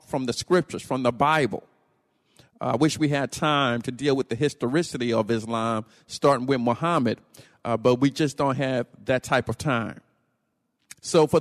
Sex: male